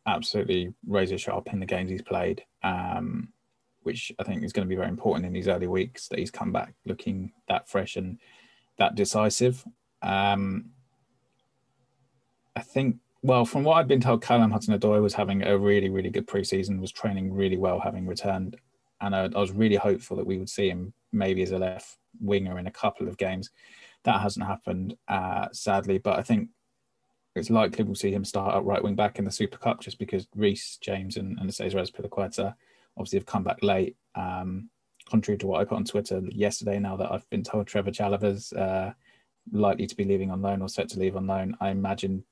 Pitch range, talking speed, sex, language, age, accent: 95-115 Hz, 205 wpm, male, English, 20-39, British